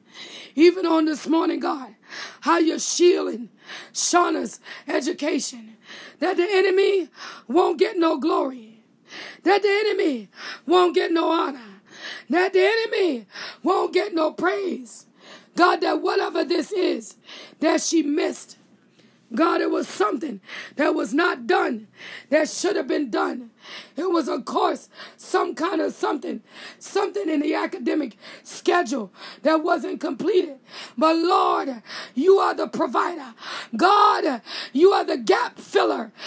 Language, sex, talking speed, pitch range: English, female, 130 wpm, 310-385 Hz